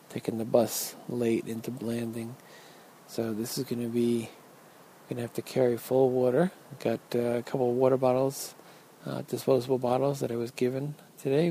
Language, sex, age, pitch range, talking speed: English, male, 40-59, 115-130 Hz, 180 wpm